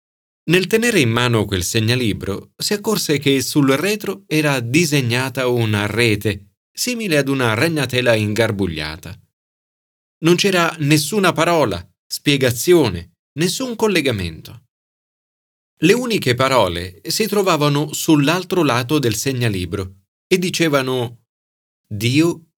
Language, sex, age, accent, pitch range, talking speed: Italian, male, 40-59, native, 110-170 Hz, 105 wpm